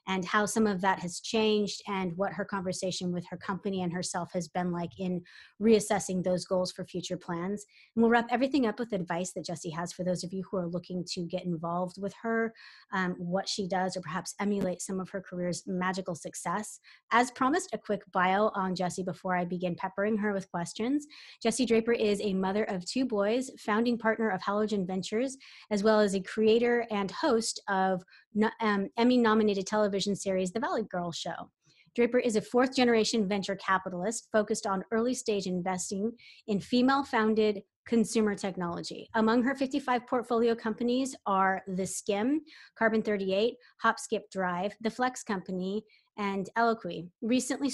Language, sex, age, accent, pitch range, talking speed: English, female, 20-39, American, 185-225 Hz, 170 wpm